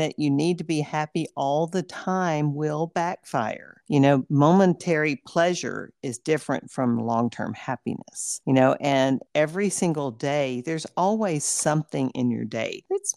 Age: 50-69